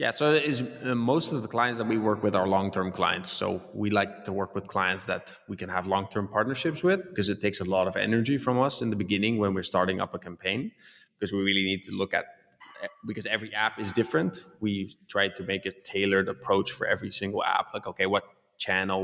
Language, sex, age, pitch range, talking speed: English, male, 20-39, 95-105 Hz, 230 wpm